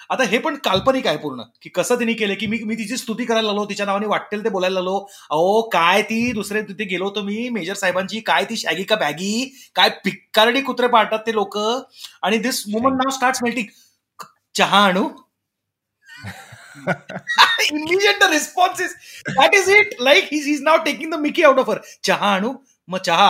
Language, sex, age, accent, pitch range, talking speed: Marathi, male, 30-49, native, 185-255 Hz, 180 wpm